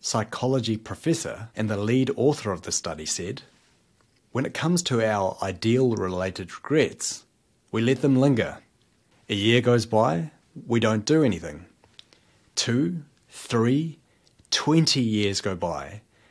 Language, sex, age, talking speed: English, male, 30-49, 130 wpm